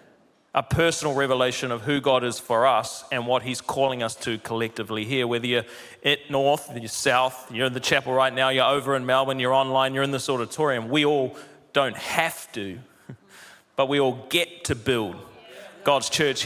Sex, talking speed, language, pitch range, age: male, 190 wpm, English, 120-145 Hz, 30-49